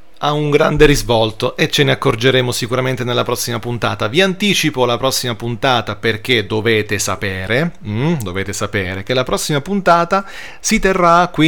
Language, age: Italian, 40-59